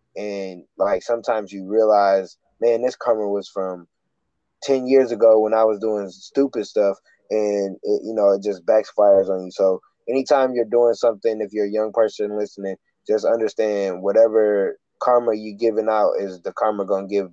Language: English